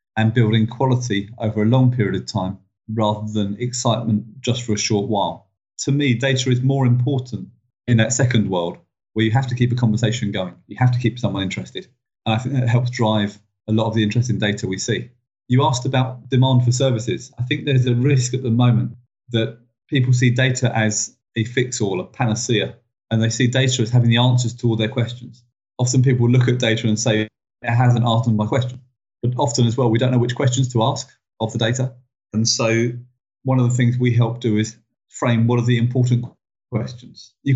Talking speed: 210 wpm